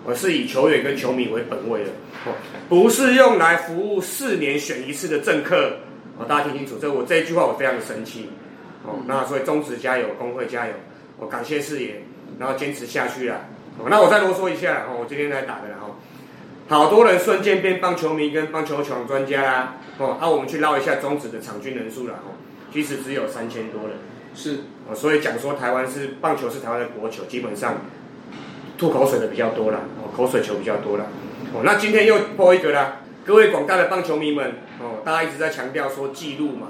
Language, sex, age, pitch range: Chinese, male, 30-49, 135-190 Hz